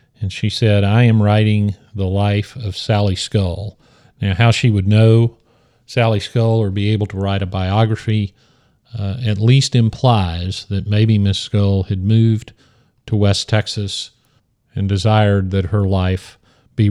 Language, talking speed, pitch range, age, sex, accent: English, 155 wpm, 105-120 Hz, 40-59, male, American